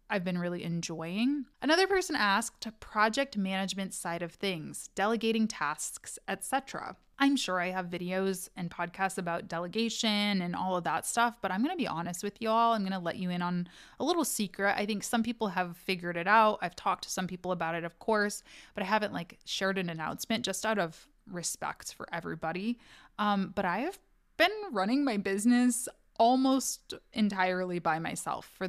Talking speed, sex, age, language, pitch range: 190 wpm, female, 20-39, English, 180-240 Hz